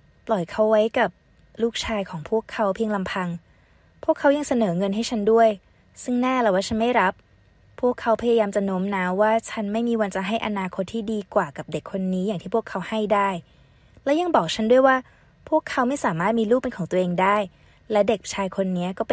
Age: 20-39